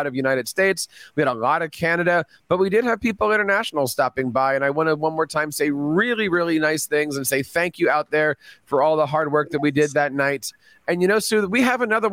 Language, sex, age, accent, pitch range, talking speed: English, male, 30-49, American, 150-215 Hz, 255 wpm